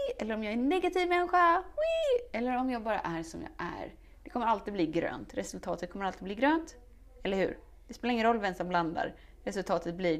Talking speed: 220 wpm